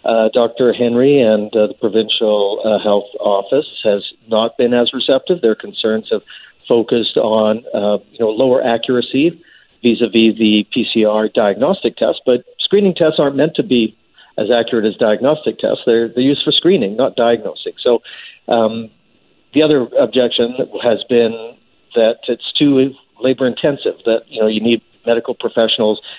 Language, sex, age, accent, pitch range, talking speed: English, male, 50-69, American, 110-150 Hz, 150 wpm